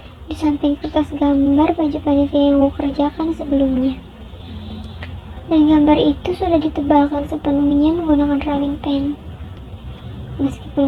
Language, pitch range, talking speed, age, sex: Indonesian, 275-305 Hz, 105 wpm, 20-39, male